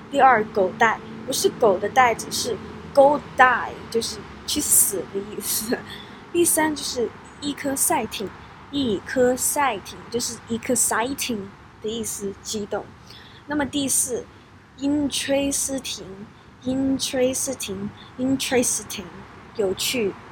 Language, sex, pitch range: Chinese, female, 220-285 Hz